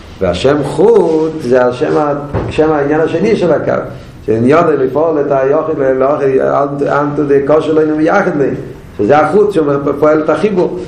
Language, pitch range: Hebrew, 115-150 Hz